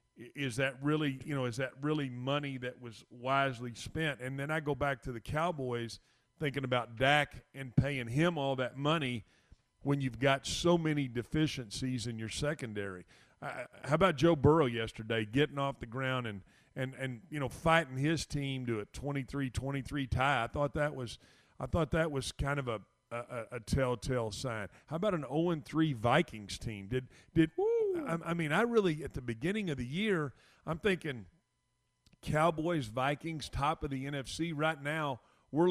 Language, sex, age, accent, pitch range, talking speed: English, male, 40-59, American, 125-145 Hz, 185 wpm